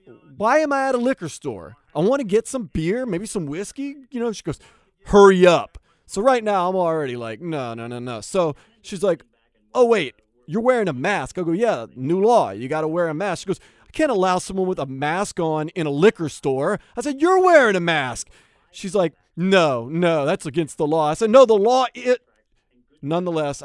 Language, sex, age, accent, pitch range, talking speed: English, male, 30-49, American, 145-225 Hz, 220 wpm